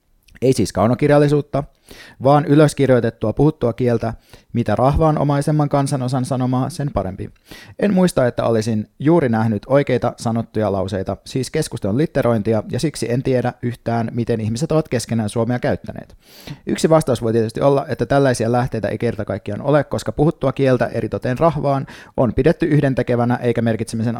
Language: Finnish